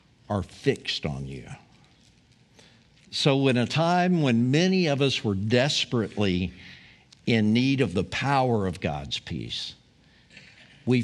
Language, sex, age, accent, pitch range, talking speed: English, male, 60-79, American, 100-140 Hz, 125 wpm